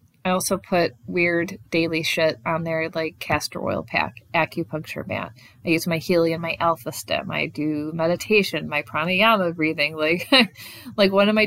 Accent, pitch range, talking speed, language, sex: American, 150-190 Hz, 165 wpm, English, female